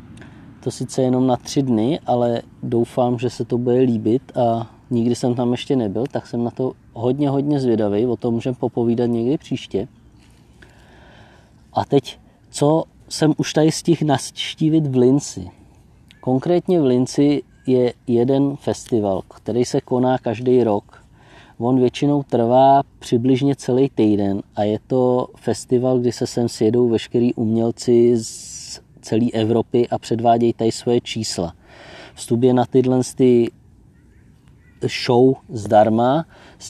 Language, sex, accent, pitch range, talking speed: Czech, male, native, 115-130 Hz, 135 wpm